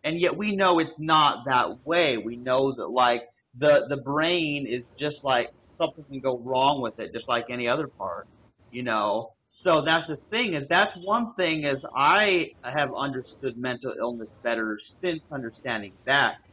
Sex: male